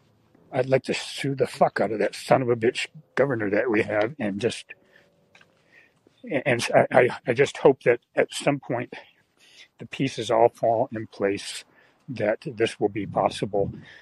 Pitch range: 110-140 Hz